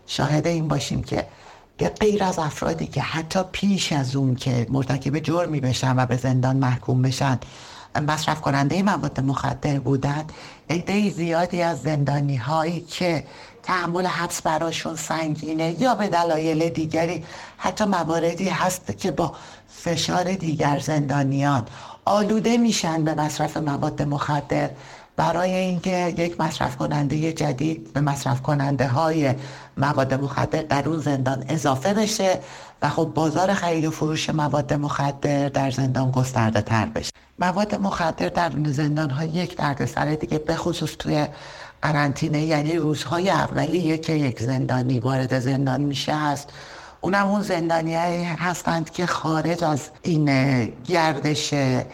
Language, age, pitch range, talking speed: Persian, 60-79, 140-170 Hz, 135 wpm